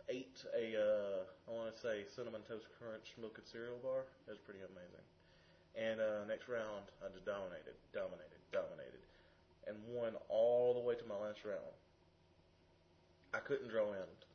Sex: male